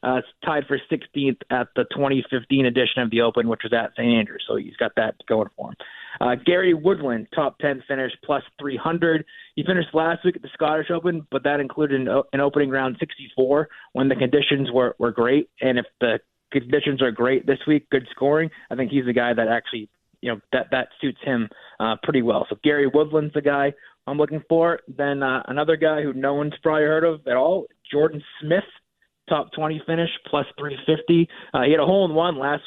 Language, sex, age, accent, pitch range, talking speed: English, male, 30-49, American, 130-155 Hz, 205 wpm